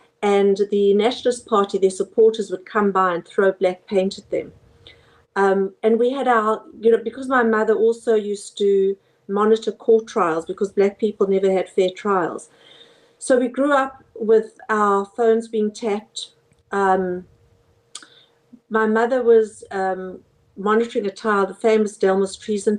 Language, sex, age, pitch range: English, female, 50-69, 195-235 Hz